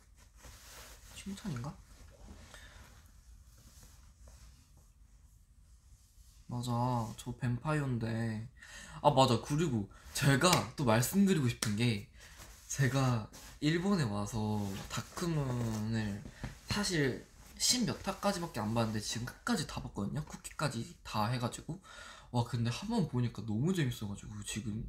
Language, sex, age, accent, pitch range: Korean, male, 20-39, native, 105-150 Hz